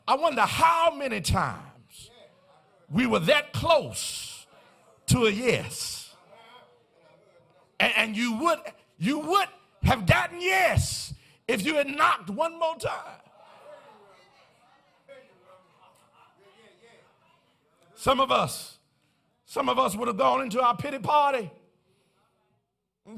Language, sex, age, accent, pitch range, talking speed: English, male, 50-69, American, 210-290 Hz, 110 wpm